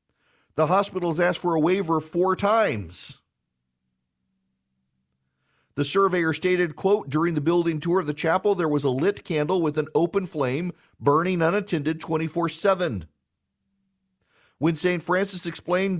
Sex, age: male, 50-69